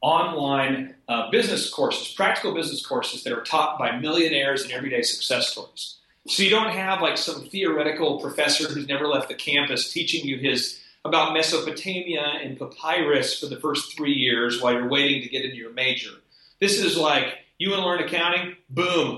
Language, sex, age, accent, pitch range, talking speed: English, male, 40-59, American, 135-185 Hz, 180 wpm